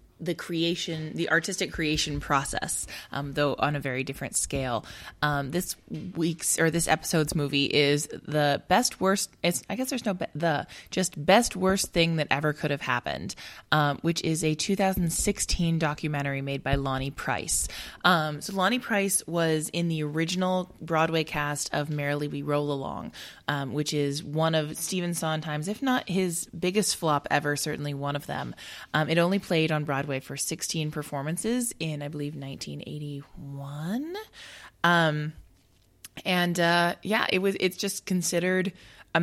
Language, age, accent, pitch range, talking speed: English, 20-39, American, 145-180 Hz, 160 wpm